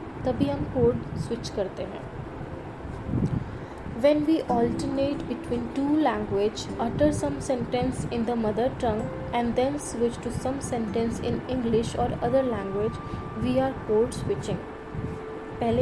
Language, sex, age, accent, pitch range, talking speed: English, female, 20-39, Indian, 225-270 Hz, 135 wpm